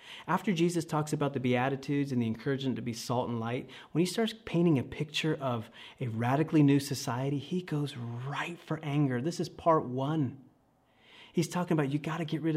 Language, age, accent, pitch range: English, 30-49, American, 110-150 Hz